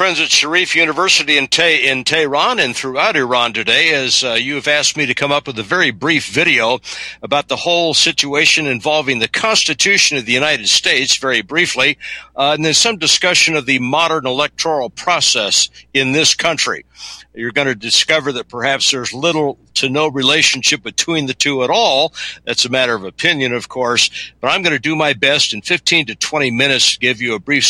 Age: 60-79